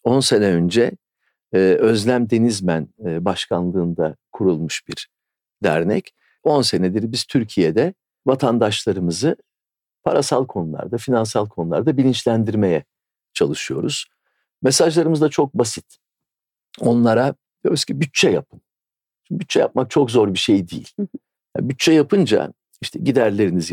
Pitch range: 105-135 Hz